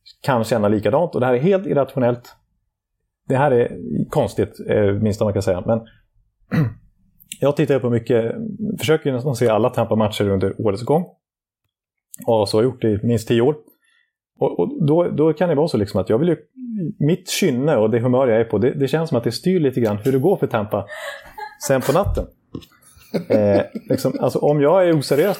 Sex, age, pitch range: male, 30-49, 105-140 Hz